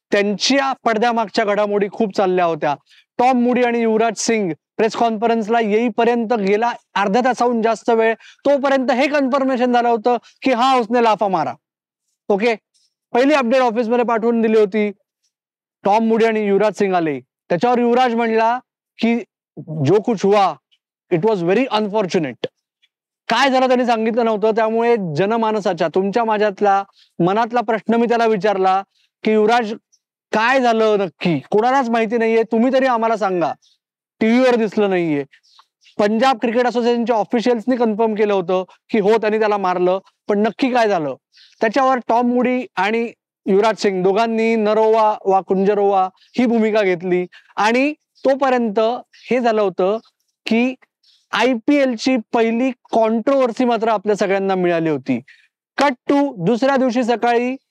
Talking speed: 135 wpm